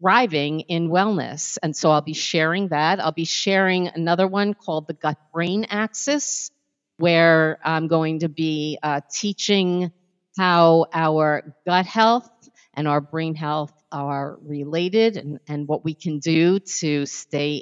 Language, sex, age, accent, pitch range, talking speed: English, female, 50-69, American, 150-185 Hz, 150 wpm